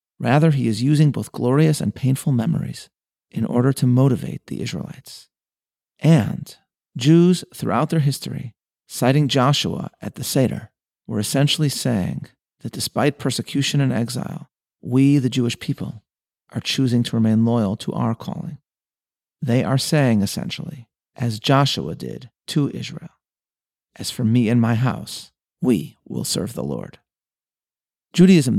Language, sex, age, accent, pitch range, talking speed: English, male, 40-59, American, 120-145 Hz, 140 wpm